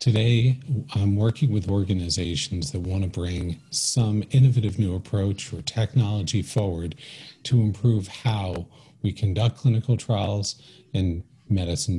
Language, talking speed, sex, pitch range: English, 120 wpm, male, 95-120 Hz